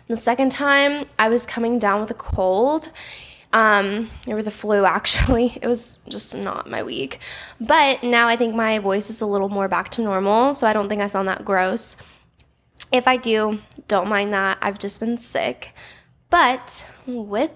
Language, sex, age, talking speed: English, female, 10-29, 185 wpm